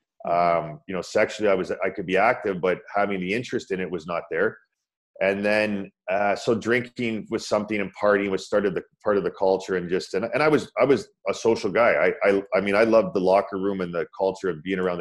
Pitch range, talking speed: 90-105 Hz, 245 wpm